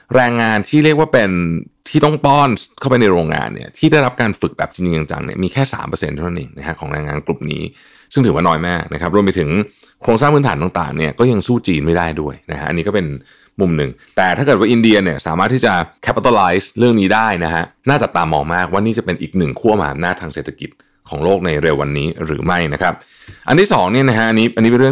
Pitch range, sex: 85-120 Hz, male